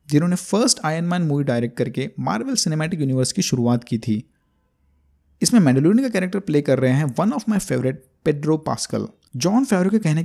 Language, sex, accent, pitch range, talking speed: Hindi, male, native, 130-200 Hz, 185 wpm